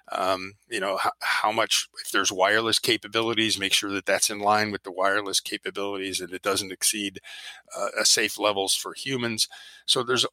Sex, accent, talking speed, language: male, American, 185 wpm, English